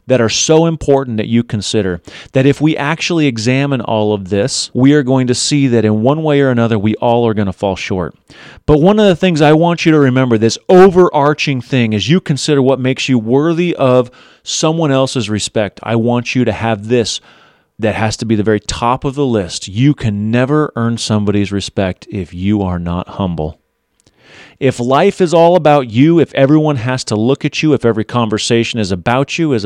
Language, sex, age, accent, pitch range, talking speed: English, male, 30-49, American, 110-145 Hz, 210 wpm